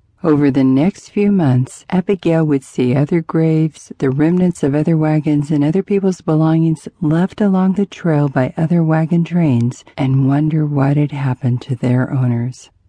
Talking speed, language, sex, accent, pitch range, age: 165 wpm, English, female, American, 135-180 Hz, 50-69